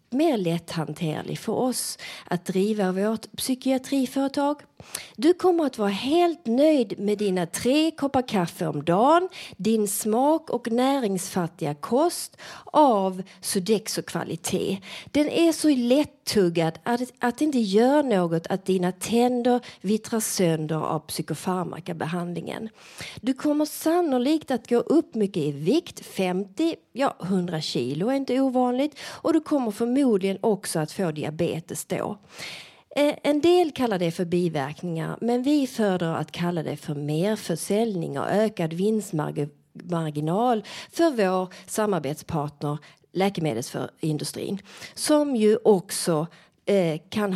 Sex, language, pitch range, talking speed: female, Swedish, 175-265 Hz, 125 wpm